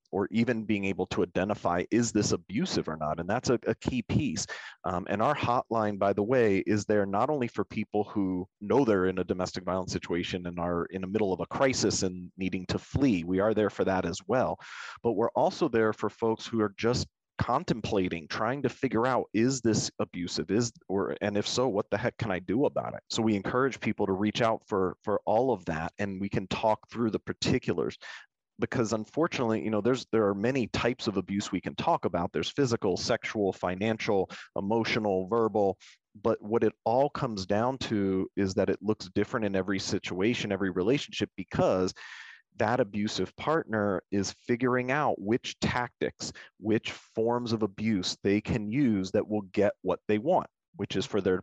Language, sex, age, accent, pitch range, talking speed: English, male, 30-49, American, 95-115 Hz, 200 wpm